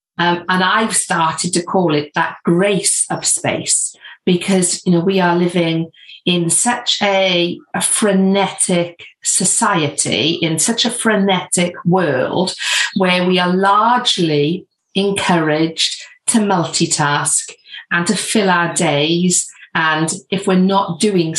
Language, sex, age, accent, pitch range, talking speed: English, female, 50-69, British, 170-200 Hz, 125 wpm